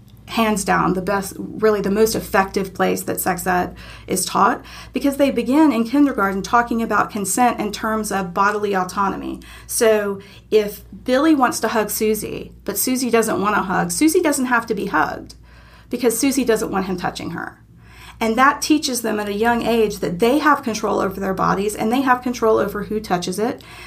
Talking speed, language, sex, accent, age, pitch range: 190 wpm, English, female, American, 40-59, 195-235 Hz